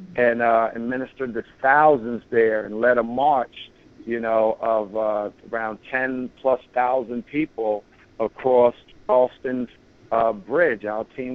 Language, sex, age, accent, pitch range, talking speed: English, male, 50-69, American, 110-125 Hz, 125 wpm